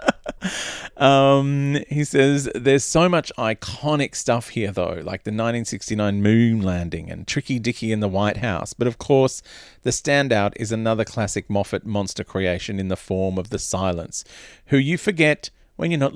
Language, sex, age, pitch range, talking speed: English, male, 40-59, 105-145 Hz, 165 wpm